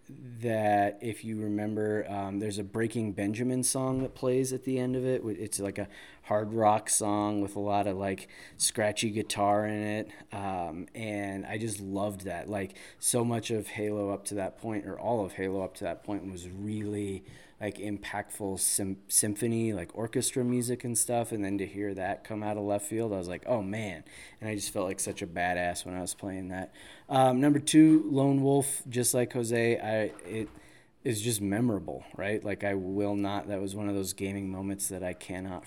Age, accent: 20-39, American